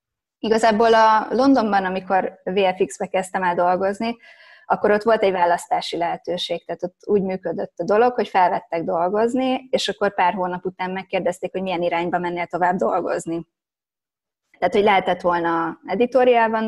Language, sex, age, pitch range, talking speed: Hungarian, female, 20-39, 175-200 Hz, 145 wpm